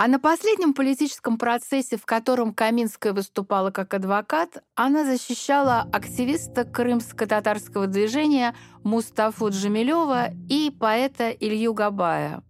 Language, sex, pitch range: Russian, female, 210-265 Hz